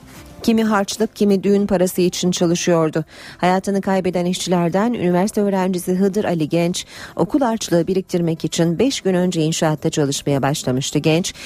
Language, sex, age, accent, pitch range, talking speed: Turkish, female, 40-59, native, 155-205 Hz, 135 wpm